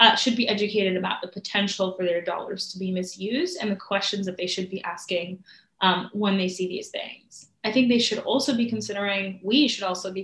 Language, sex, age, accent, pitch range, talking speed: English, female, 20-39, American, 190-230 Hz, 225 wpm